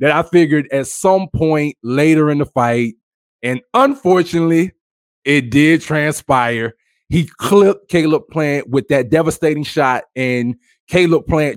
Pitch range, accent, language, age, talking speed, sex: 140-195 Hz, American, English, 20-39, 135 wpm, male